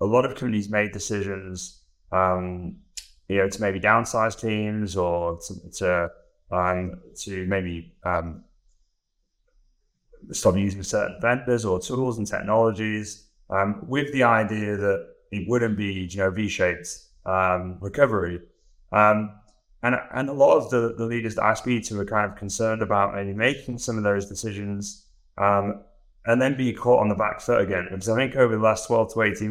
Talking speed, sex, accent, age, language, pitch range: 170 wpm, male, British, 20-39, English, 95-115 Hz